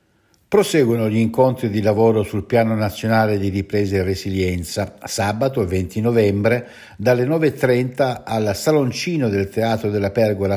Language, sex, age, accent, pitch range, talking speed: Italian, male, 60-79, native, 100-135 Hz, 130 wpm